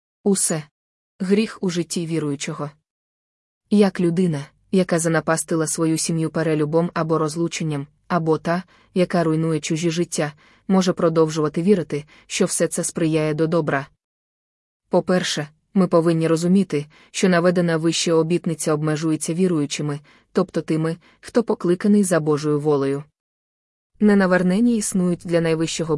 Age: 20-39